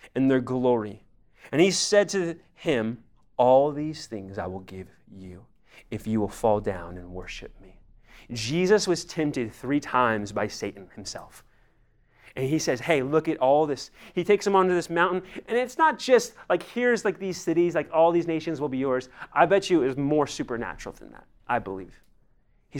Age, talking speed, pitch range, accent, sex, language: 30-49, 190 wpm, 110-180 Hz, American, male, English